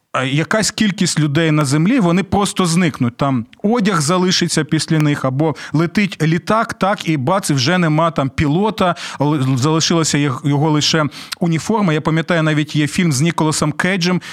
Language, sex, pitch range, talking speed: Ukrainian, male, 150-185 Hz, 145 wpm